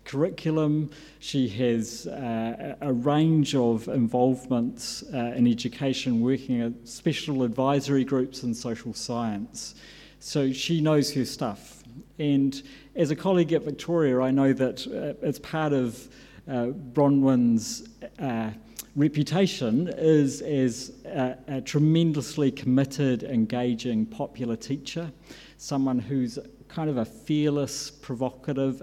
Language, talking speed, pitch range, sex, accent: English, 120 wpm, 120-145 Hz, male, British